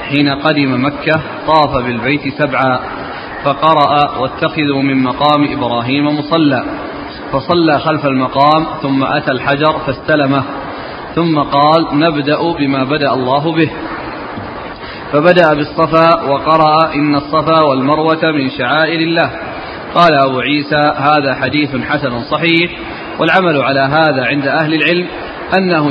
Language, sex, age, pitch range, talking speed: Arabic, male, 30-49, 145-170 Hz, 115 wpm